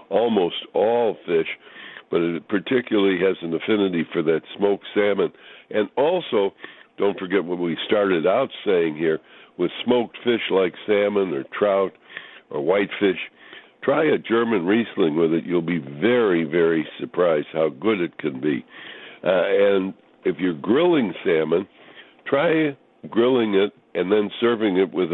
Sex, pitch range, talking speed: female, 85-110 Hz, 150 wpm